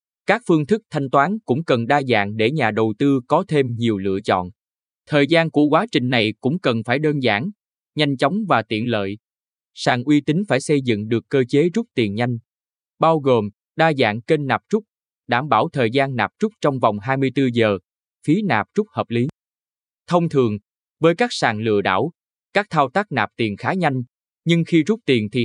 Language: Vietnamese